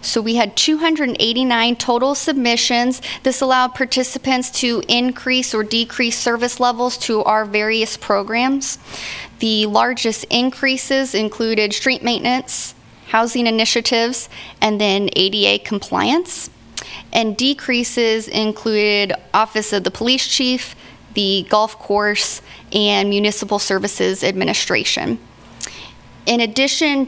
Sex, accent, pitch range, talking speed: female, American, 195-250 Hz, 105 wpm